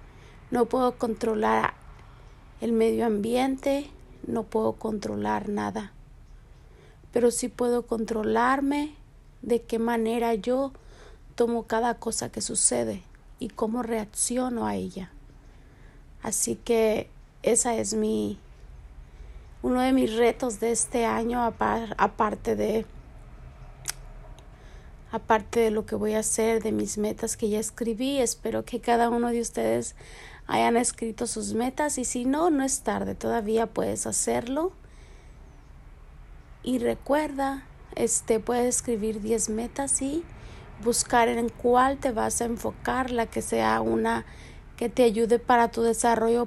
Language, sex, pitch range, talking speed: Spanish, female, 210-240 Hz, 130 wpm